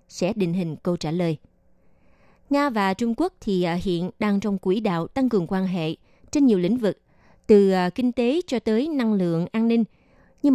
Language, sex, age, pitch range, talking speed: Vietnamese, female, 20-39, 180-235 Hz, 195 wpm